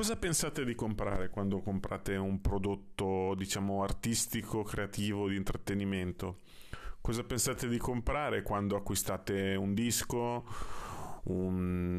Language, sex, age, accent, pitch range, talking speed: Italian, male, 30-49, native, 100-120 Hz, 110 wpm